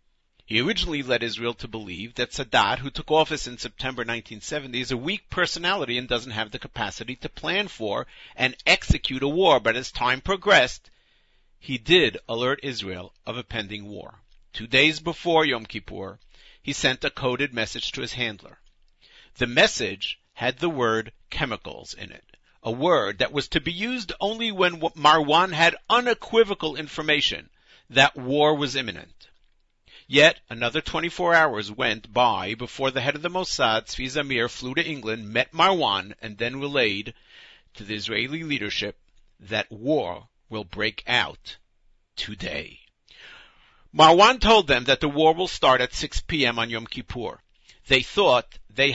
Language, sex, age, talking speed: English, male, 50-69, 160 wpm